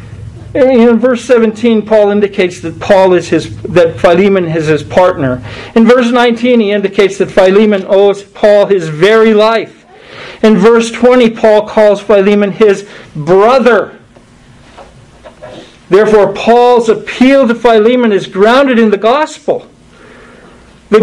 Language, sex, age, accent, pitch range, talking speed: English, male, 50-69, American, 185-255 Hz, 130 wpm